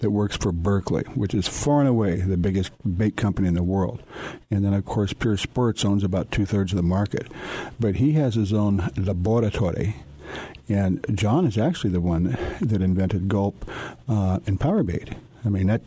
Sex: male